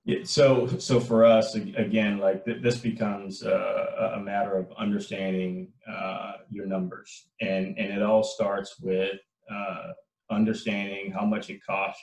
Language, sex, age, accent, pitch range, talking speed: English, male, 30-49, American, 95-120 Hz, 150 wpm